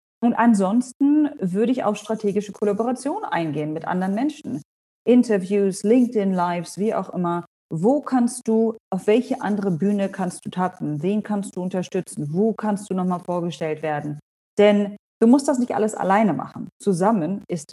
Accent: German